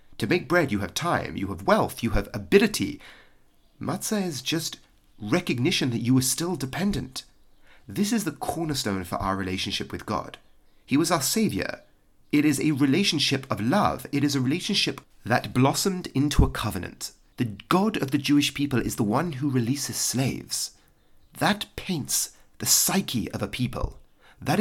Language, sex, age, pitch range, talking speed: English, male, 30-49, 105-145 Hz, 170 wpm